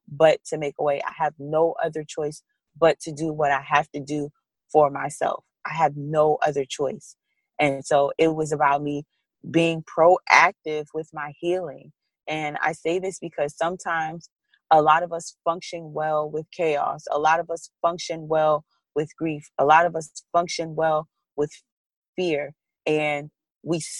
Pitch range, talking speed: 150-180 Hz, 170 wpm